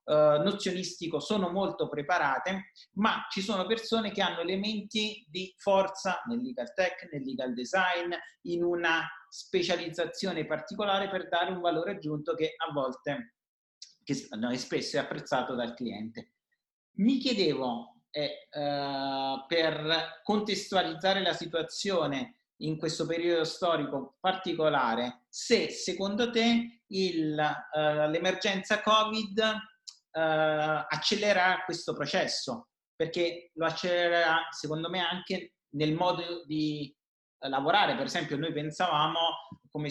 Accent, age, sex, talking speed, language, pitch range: native, 40-59, male, 115 wpm, Italian, 155-190 Hz